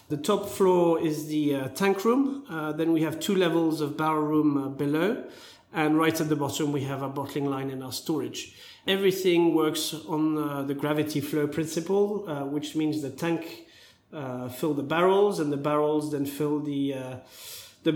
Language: English